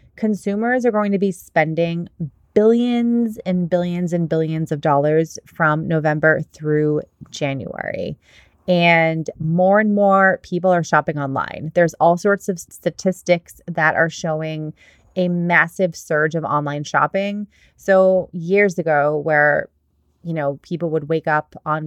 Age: 30-49